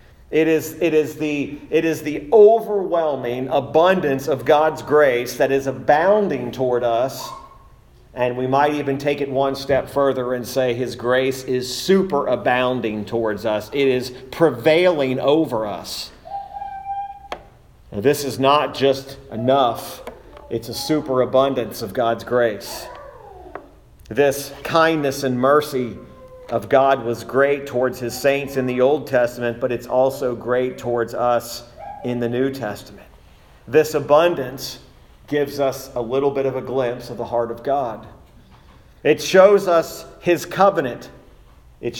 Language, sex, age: English, male, 40-59